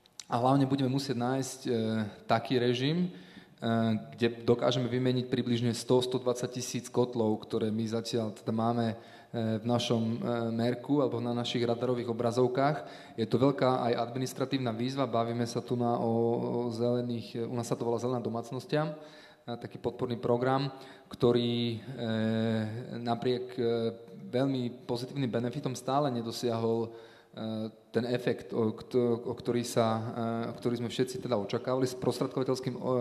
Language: Slovak